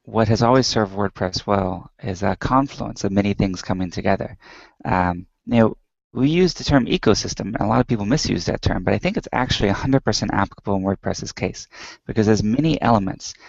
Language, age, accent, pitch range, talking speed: English, 20-39, American, 100-120 Hz, 195 wpm